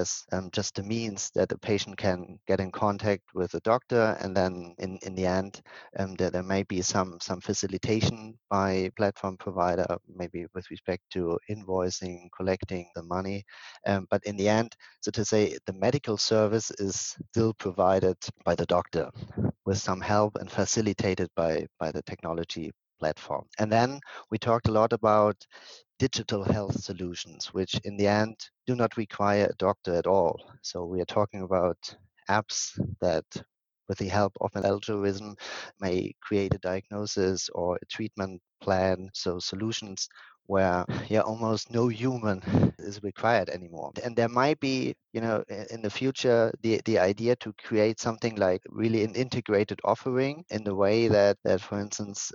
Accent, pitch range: German, 95-110 Hz